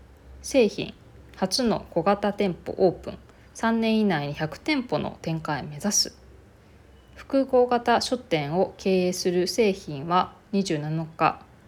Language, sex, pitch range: Japanese, female, 150-205 Hz